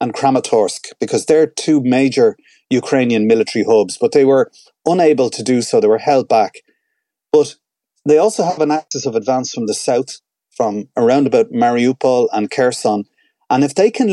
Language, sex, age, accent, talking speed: English, male, 30-49, Irish, 175 wpm